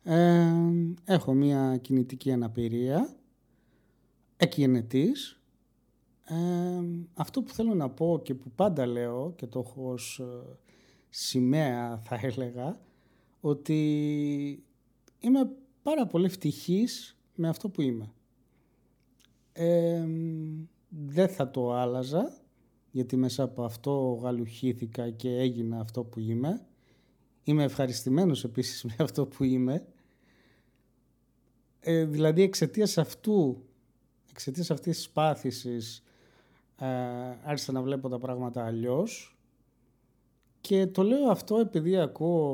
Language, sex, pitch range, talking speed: Greek, male, 125-165 Hz, 100 wpm